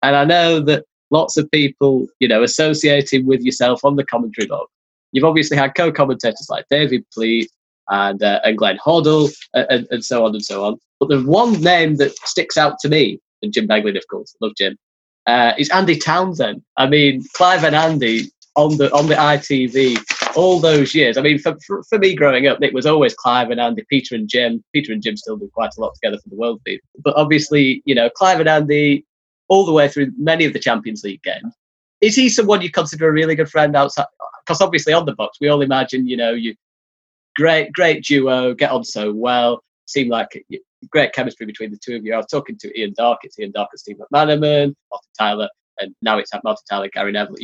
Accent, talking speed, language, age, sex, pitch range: British, 220 wpm, English, 20-39, male, 120-160 Hz